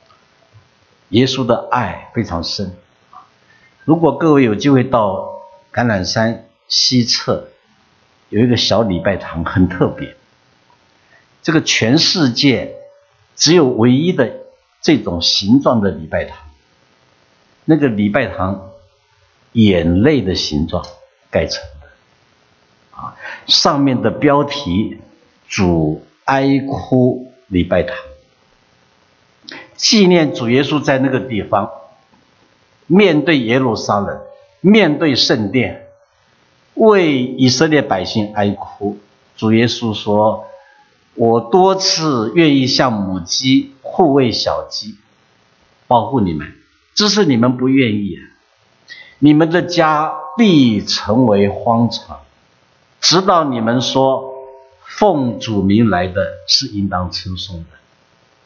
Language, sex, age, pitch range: English, male, 60-79, 80-135 Hz